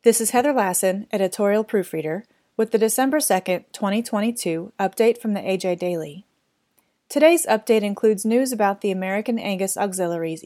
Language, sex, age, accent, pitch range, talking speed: English, female, 30-49, American, 185-230 Hz, 145 wpm